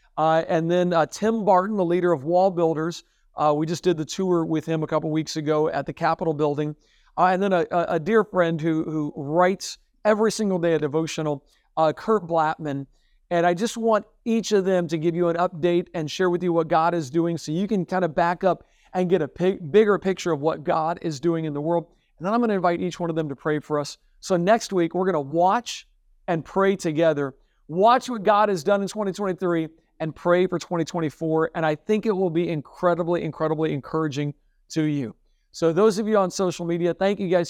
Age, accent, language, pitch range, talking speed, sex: 50-69, American, English, 160-190 Hz, 220 wpm, male